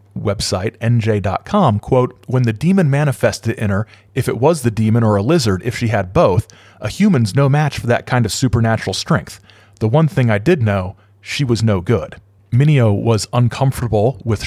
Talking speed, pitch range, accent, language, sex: 185 wpm, 105-125 Hz, American, English, male